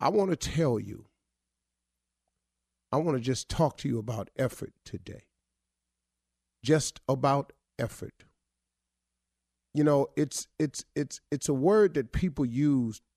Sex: male